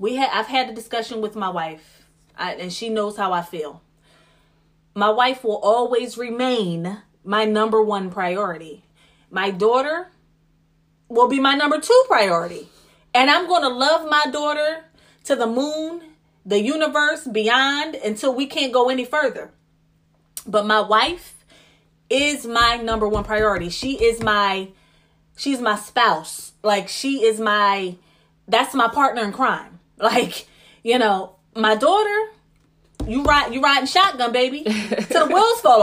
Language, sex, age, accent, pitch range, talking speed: English, female, 20-39, American, 190-275 Hz, 150 wpm